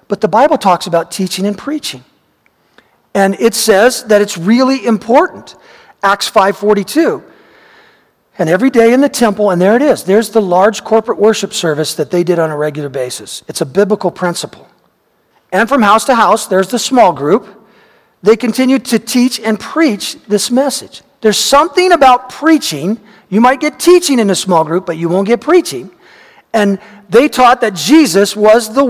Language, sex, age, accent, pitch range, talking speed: English, male, 40-59, American, 180-255 Hz, 175 wpm